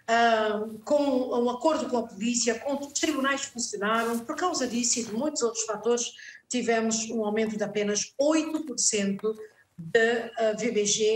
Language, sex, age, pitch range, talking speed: Portuguese, female, 50-69, 215-270 Hz, 155 wpm